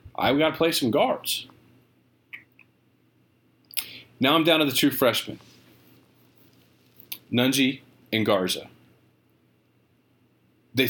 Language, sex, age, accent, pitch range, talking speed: English, male, 40-59, American, 105-145 Hz, 95 wpm